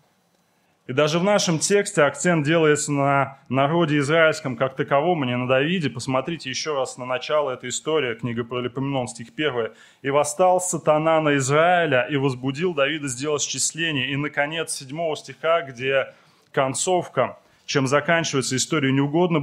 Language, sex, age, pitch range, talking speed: Russian, male, 20-39, 135-165 Hz, 155 wpm